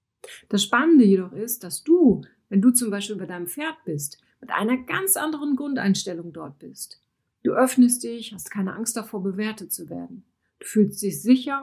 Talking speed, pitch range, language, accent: 180 wpm, 185-245 Hz, German, German